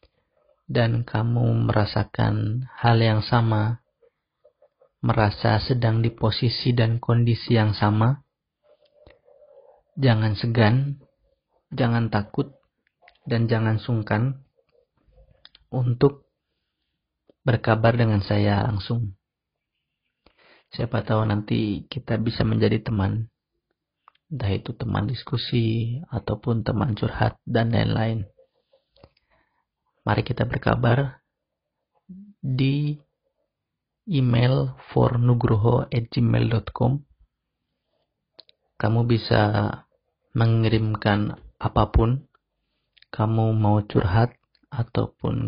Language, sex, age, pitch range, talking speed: Malay, male, 40-59, 110-130 Hz, 75 wpm